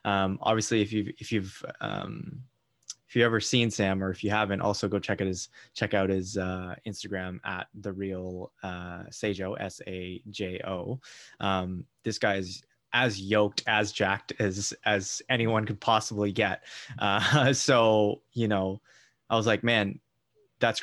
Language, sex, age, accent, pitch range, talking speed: English, male, 20-39, American, 95-110 Hz, 160 wpm